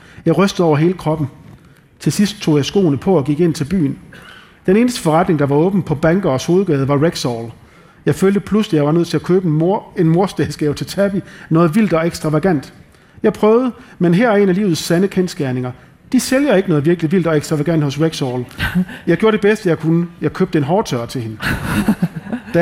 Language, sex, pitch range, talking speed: Danish, male, 155-195 Hz, 210 wpm